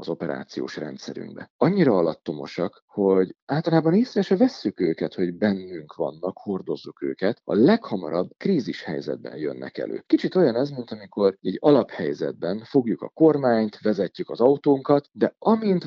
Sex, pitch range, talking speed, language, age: male, 95-160 Hz, 140 wpm, Hungarian, 50-69